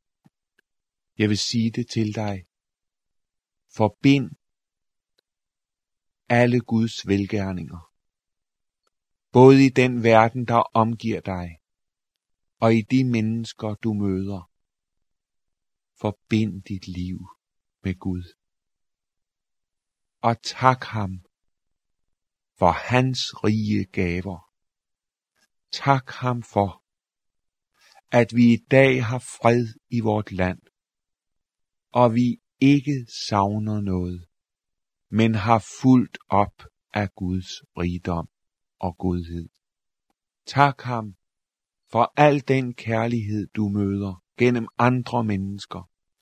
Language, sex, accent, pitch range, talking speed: Danish, male, native, 90-115 Hz, 95 wpm